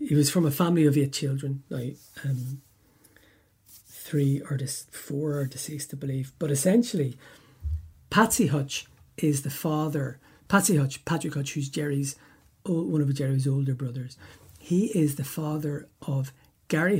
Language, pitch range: English, 135-155 Hz